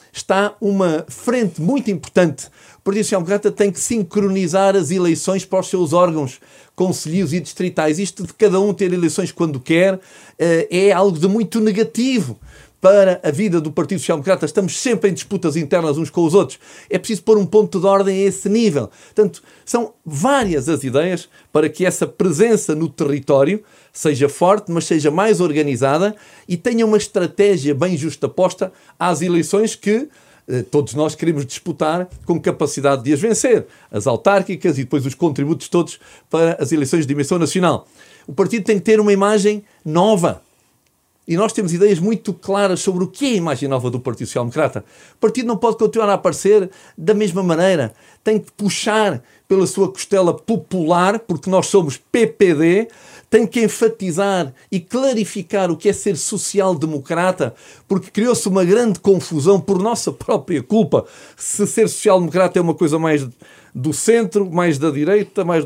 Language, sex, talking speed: Portuguese, male, 170 wpm